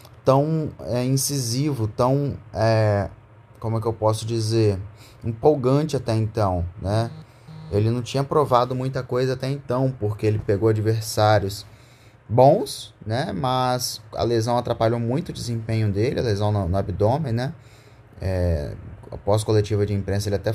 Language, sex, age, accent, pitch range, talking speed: Portuguese, male, 20-39, Brazilian, 105-130 Hz, 135 wpm